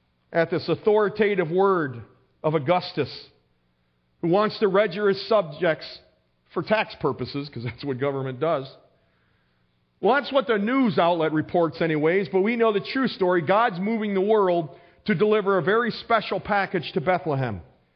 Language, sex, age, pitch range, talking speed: English, male, 40-59, 140-210 Hz, 155 wpm